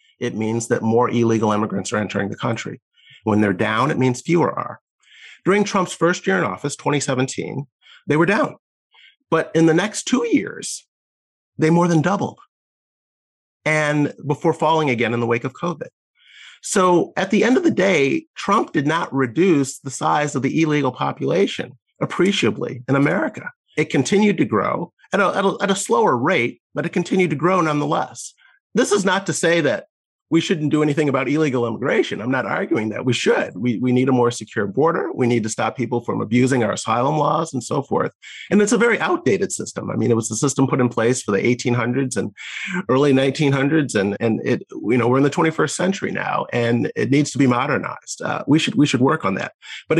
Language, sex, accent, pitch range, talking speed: English, male, American, 120-165 Hz, 200 wpm